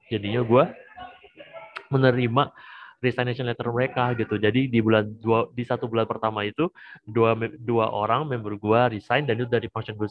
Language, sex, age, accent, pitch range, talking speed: Indonesian, male, 30-49, native, 110-125 Hz, 160 wpm